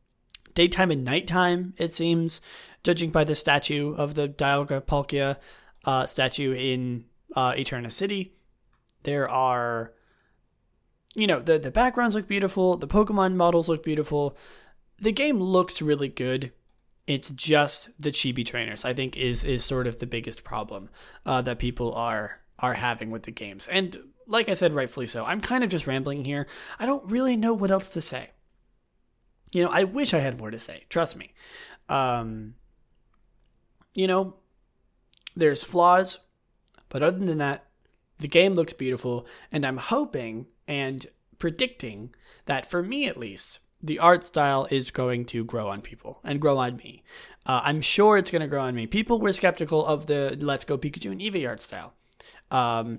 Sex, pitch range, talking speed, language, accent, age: male, 125-180 Hz, 170 wpm, English, American, 20-39